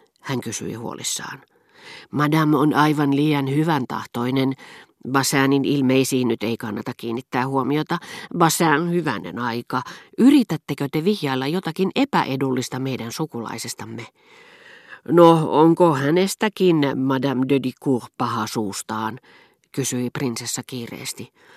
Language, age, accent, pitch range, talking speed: Finnish, 40-59, native, 125-170 Hz, 105 wpm